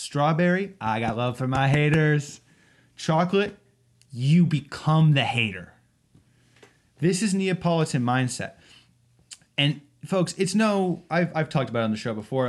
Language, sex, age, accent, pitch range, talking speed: English, male, 20-39, American, 115-155 Hz, 135 wpm